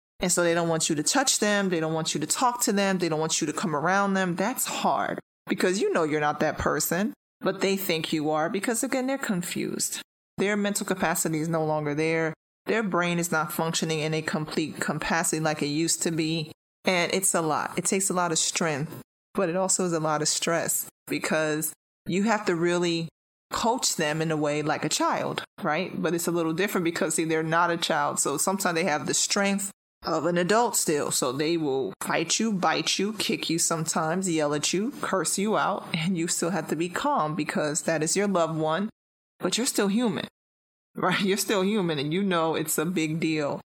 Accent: American